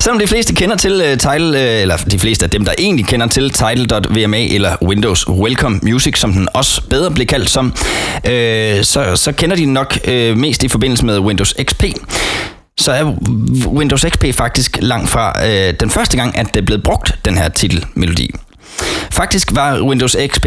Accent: native